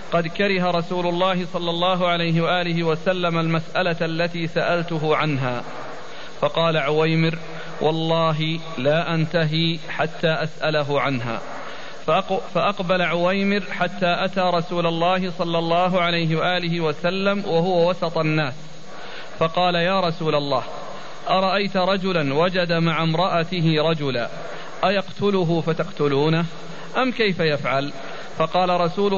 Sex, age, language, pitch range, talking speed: male, 40-59, Arabic, 155-180 Hz, 105 wpm